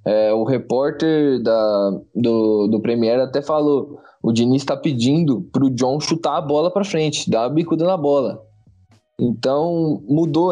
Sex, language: male, Portuguese